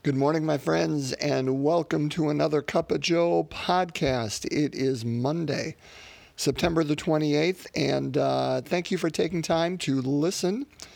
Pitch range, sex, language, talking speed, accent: 125-165 Hz, male, English, 150 wpm, American